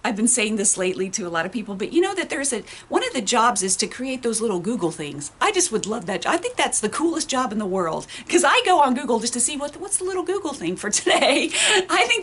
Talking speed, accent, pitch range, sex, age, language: 290 wpm, American, 185-275 Hz, female, 40-59, English